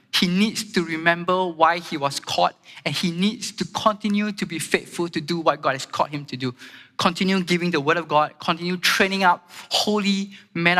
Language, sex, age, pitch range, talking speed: English, male, 20-39, 140-180 Hz, 200 wpm